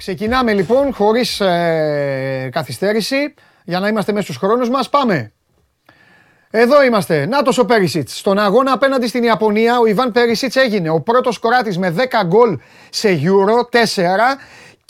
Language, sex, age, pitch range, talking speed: Greek, male, 30-49, 175-235 Hz, 145 wpm